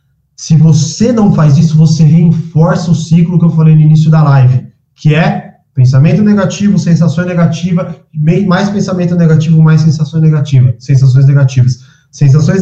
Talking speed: 145 wpm